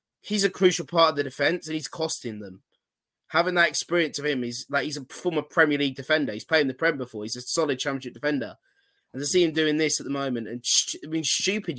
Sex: male